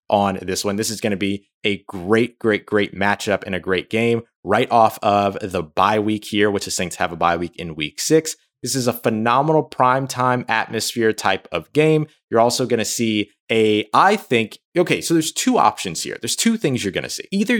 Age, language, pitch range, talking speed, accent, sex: 20-39, English, 95-125 Hz, 220 wpm, American, male